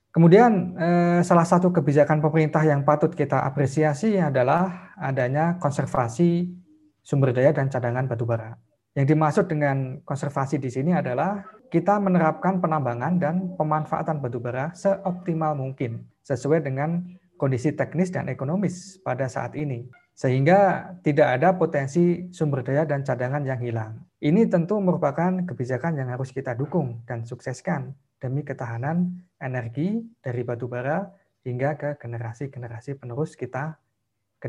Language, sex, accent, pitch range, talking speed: Indonesian, male, native, 130-170 Hz, 125 wpm